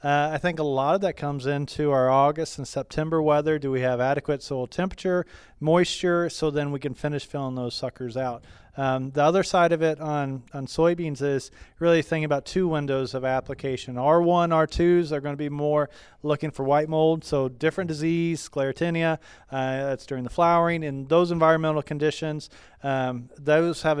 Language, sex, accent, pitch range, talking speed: English, male, American, 135-155 Hz, 185 wpm